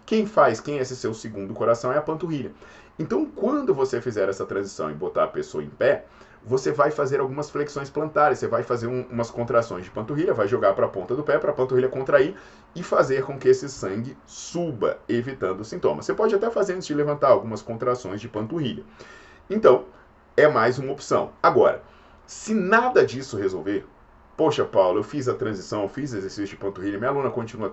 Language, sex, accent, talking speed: Portuguese, male, Brazilian, 200 wpm